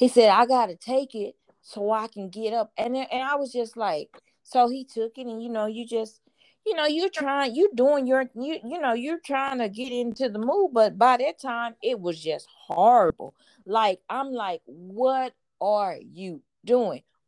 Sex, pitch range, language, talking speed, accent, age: female, 185-255 Hz, English, 210 wpm, American, 40-59